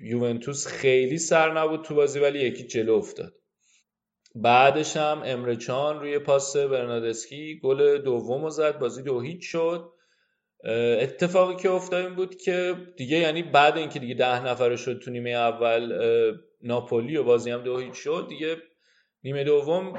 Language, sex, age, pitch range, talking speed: Persian, male, 30-49, 130-175 Hz, 145 wpm